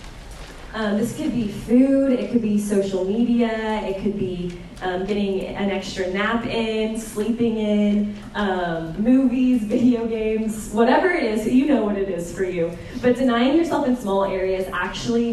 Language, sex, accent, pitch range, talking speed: English, female, American, 190-235 Hz, 165 wpm